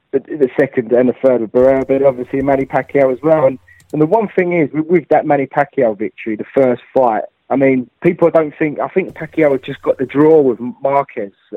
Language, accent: English, British